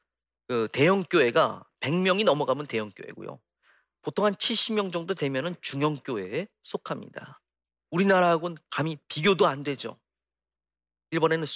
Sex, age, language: male, 40-59, Korean